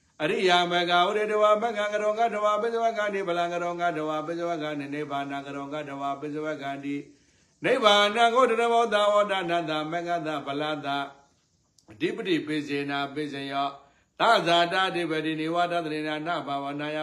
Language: English